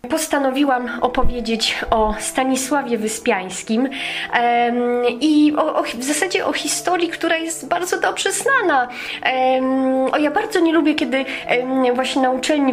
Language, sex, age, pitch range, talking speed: Polish, female, 20-39, 215-265 Hz, 135 wpm